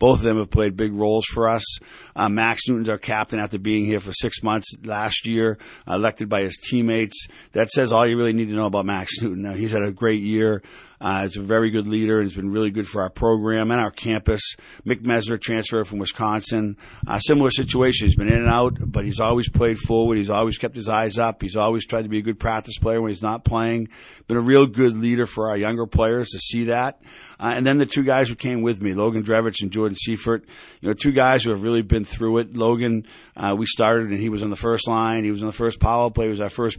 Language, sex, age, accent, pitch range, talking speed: English, male, 50-69, American, 105-115 Hz, 255 wpm